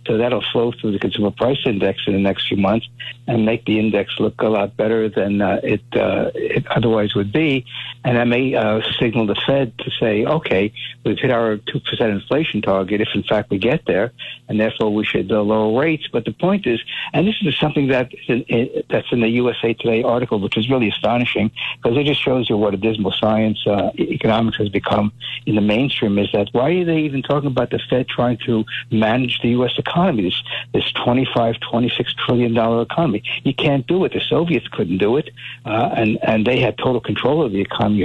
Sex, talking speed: male, 215 wpm